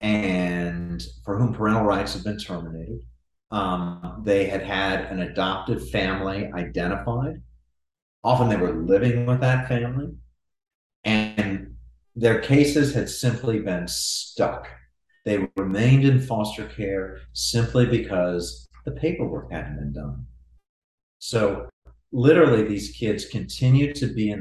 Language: English